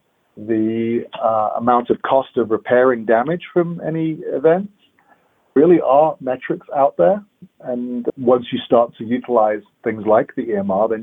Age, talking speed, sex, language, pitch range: 40-59, 145 wpm, male, English, 110-135 Hz